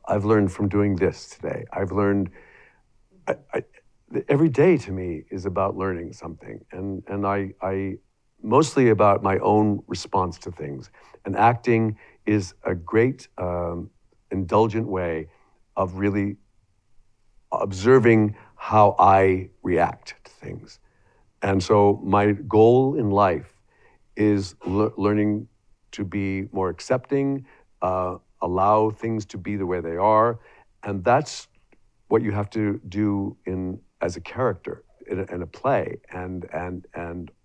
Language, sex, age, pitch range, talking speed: English, male, 50-69, 95-115 Hz, 140 wpm